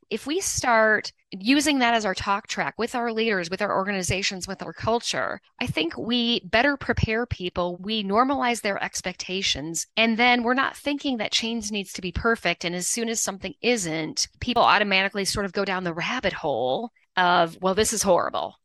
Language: English